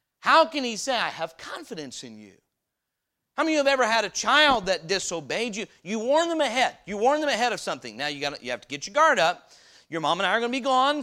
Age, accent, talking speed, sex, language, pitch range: 40-59, American, 270 wpm, male, English, 180-260 Hz